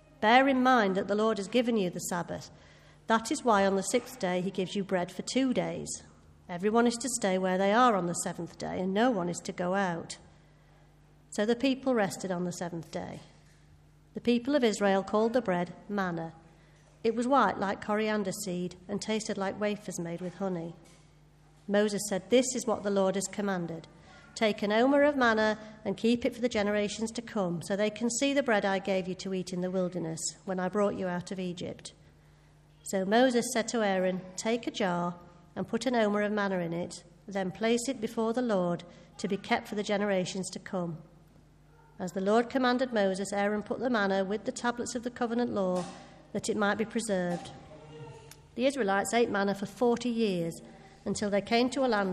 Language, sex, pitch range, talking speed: English, female, 175-225 Hz, 205 wpm